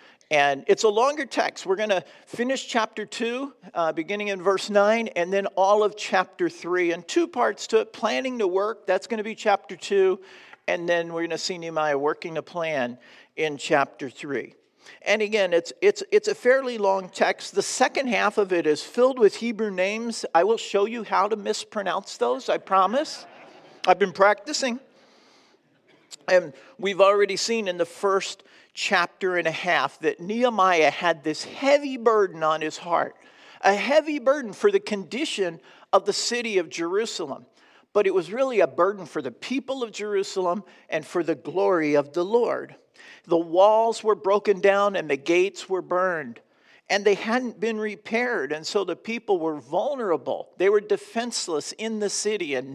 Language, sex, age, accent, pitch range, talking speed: English, male, 50-69, American, 175-235 Hz, 180 wpm